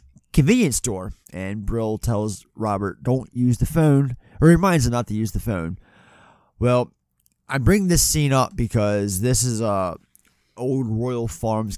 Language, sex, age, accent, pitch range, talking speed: English, male, 30-49, American, 100-125 Hz, 160 wpm